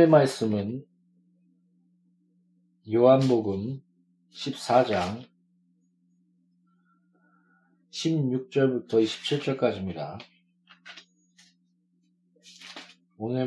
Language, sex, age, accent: Korean, male, 40-59, native